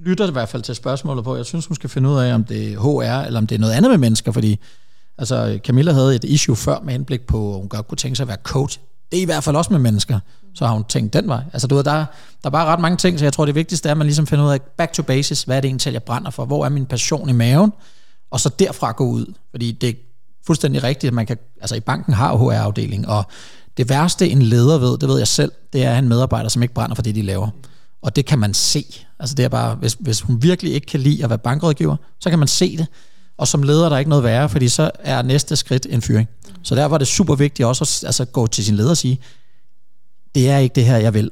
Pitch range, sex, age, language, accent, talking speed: 120-155 Hz, male, 30-49, Danish, native, 285 wpm